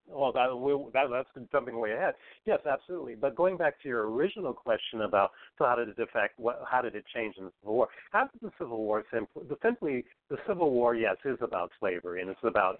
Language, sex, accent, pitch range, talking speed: English, male, American, 110-130 Hz, 235 wpm